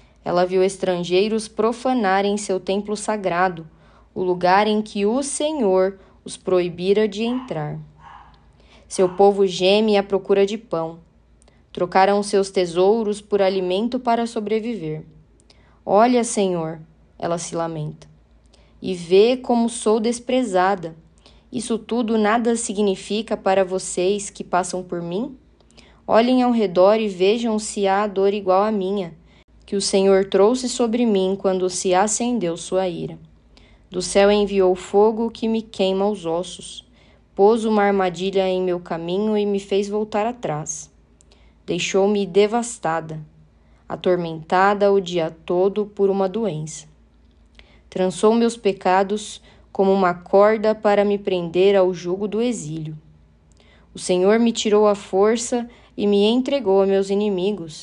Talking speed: 130 wpm